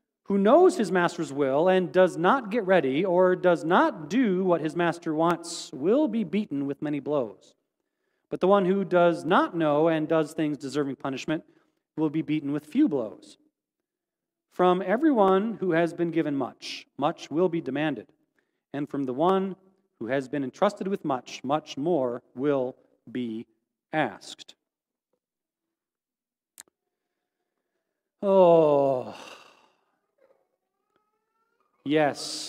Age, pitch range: 40-59, 155-215 Hz